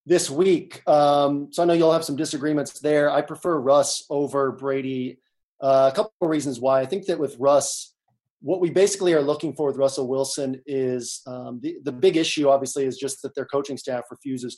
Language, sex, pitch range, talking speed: English, male, 130-155 Hz, 205 wpm